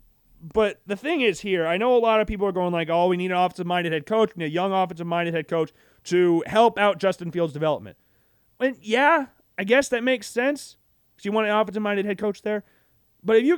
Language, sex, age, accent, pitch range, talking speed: English, male, 30-49, American, 145-215 Hz, 230 wpm